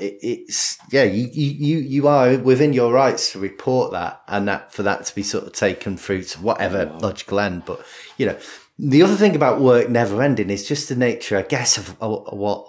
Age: 30-49